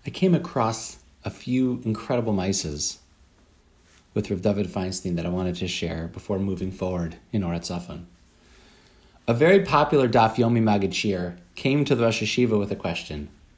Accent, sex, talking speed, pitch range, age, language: American, male, 160 wpm, 95-125 Hz, 30-49, English